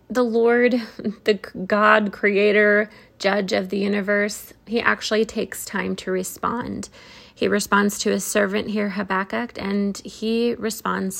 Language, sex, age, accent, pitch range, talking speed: English, female, 20-39, American, 190-220 Hz, 135 wpm